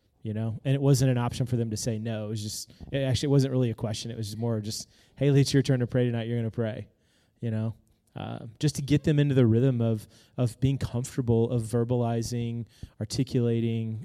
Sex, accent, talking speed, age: male, American, 225 wpm, 20-39